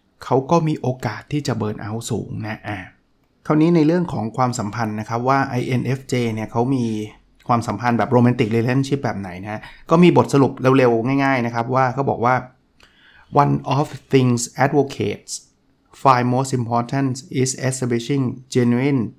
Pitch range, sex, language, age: 115-135 Hz, male, Thai, 20-39